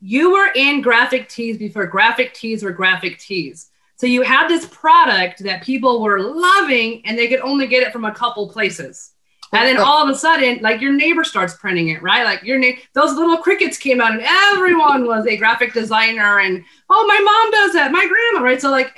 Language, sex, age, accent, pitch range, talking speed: English, female, 30-49, American, 235-315 Hz, 215 wpm